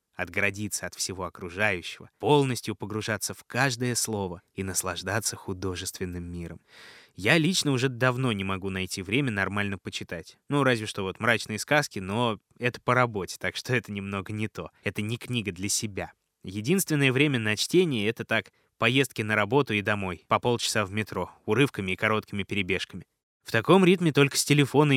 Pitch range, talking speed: 100-130 Hz, 165 wpm